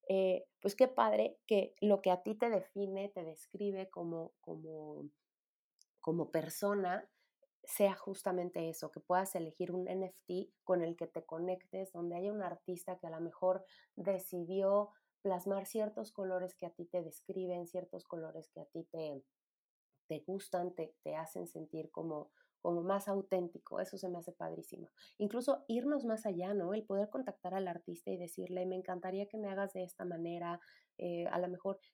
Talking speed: 170 wpm